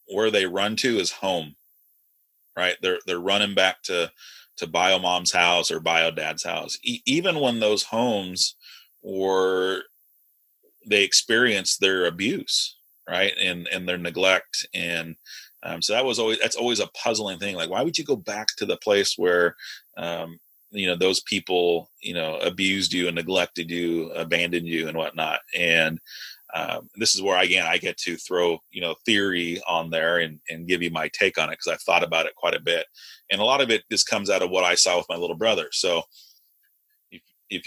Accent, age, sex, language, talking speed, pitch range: American, 30-49, male, English, 195 wpm, 85-115 Hz